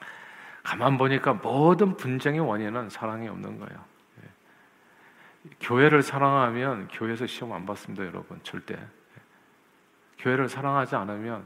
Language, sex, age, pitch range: Korean, male, 50-69, 105-135 Hz